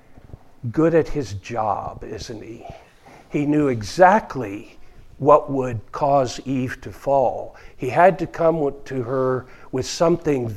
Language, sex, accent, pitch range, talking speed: English, male, American, 130-180 Hz, 130 wpm